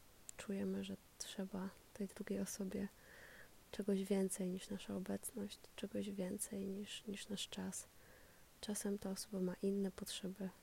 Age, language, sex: 20-39, Polish, female